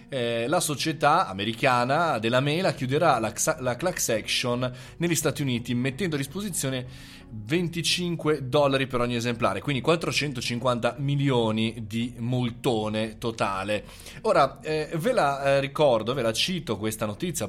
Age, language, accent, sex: 20-39, Italian, native, male